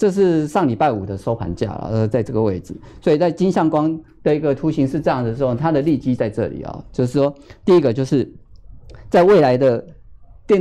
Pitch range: 110-145 Hz